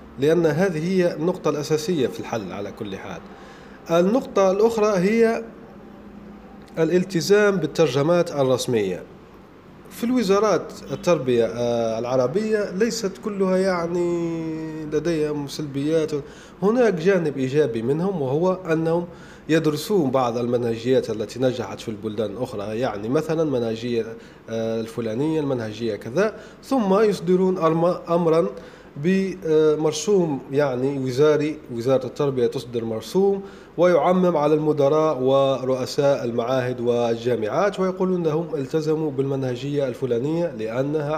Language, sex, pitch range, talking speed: Arabic, male, 130-185 Hz, 100 wpm